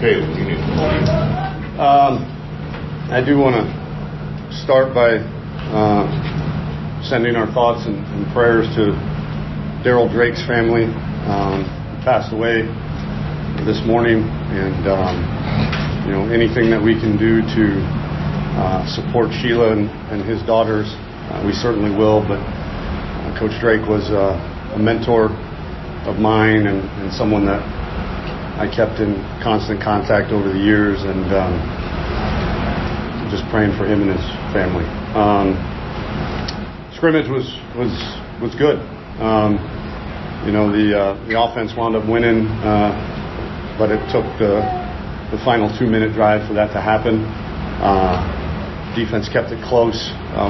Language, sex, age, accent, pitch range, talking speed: English, male, 40-59, American, 95-115 Hz, 130 wpm